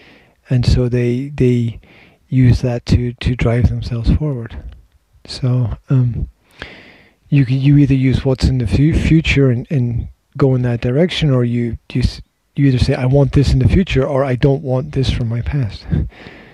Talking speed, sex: 175 wpm, male